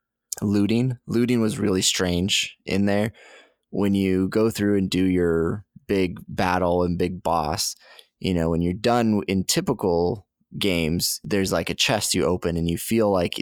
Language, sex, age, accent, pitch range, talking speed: English, male, 20-39, American, 85-105 Hz, 165 wpm